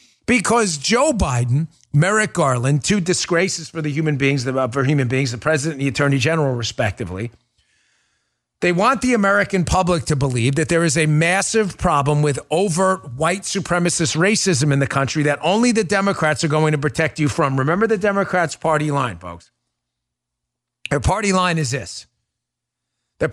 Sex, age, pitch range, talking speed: male, 40-59, 140-205 Hz, 160 wpm